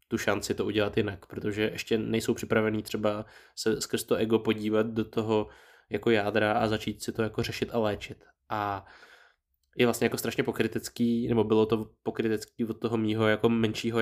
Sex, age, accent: male, 20-39, native